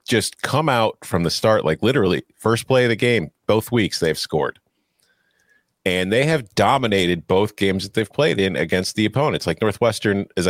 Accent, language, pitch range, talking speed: American, English, 100-135 Hz, 190 wpm